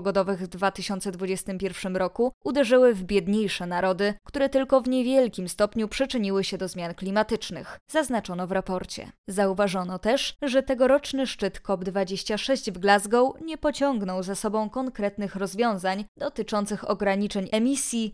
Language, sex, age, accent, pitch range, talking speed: Polish, female, 20-39, native, 190-245 Hz, 120 wpm